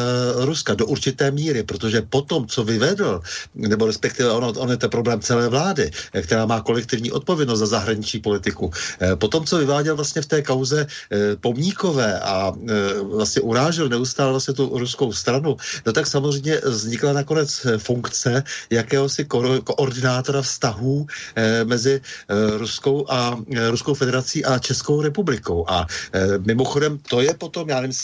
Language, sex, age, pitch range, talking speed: Slovak, male, 50-69, 115-140 Hz, 135 wpm